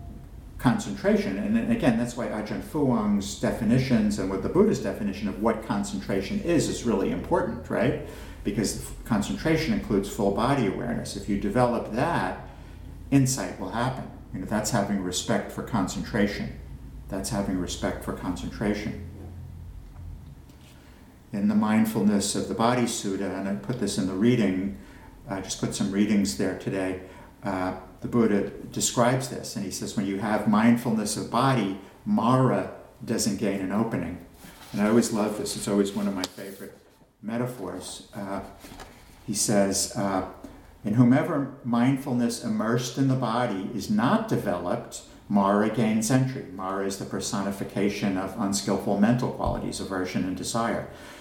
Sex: male